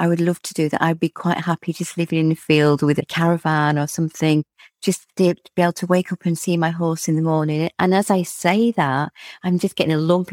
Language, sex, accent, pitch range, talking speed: English, female, British, 160-190 Hz, 255 wpm